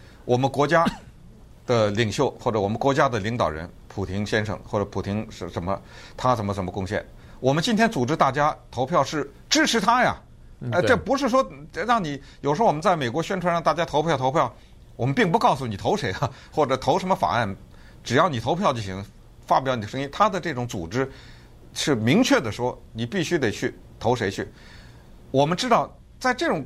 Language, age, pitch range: Chinese, 50-69, 110-160 Hz